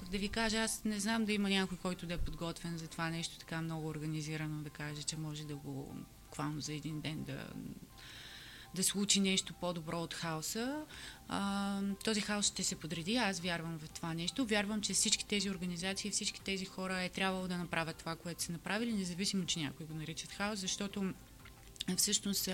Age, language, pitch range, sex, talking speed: 20-39, Bulgarian, 165-195 Hz, female, 190 wpm